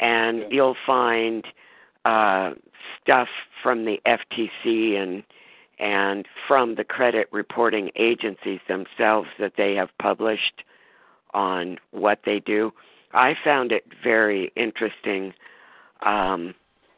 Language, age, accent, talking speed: English, 50-69, American, 105 wpm